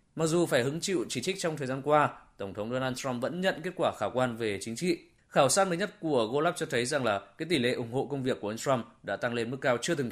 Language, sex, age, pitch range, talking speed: Vietnamese, male, 20-39, 120-160 Hz, 300 wpm